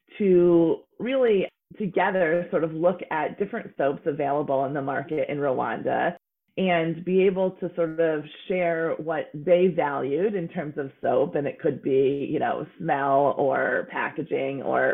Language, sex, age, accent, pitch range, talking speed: English, female, 30-49, American, 145-190 Hz, 155 wpm